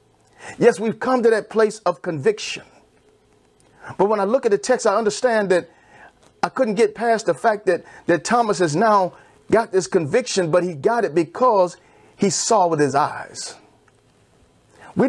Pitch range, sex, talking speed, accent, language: 170-220 Hz, male, 170 wpm, American, English